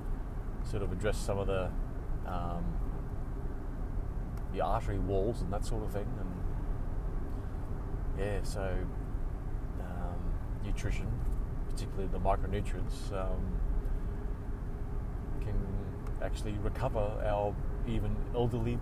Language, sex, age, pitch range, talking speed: English, male, 30-49, 95-115 Hz, 95 wpm